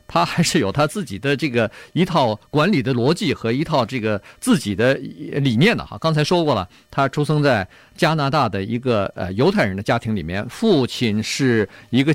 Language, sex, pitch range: Chinese, male, 115-165 Hz